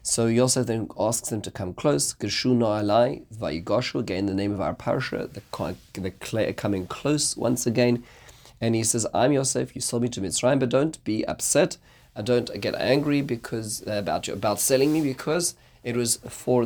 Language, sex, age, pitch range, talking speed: English, male, 30-49, 100-120 Hz, 175 wpm